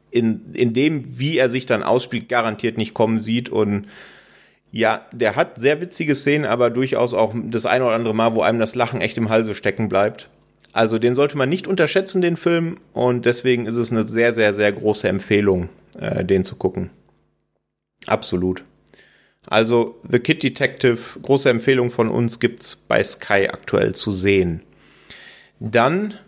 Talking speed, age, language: 170 wpm, 30-49, German